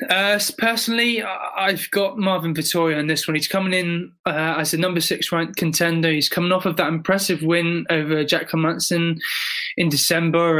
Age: 20-39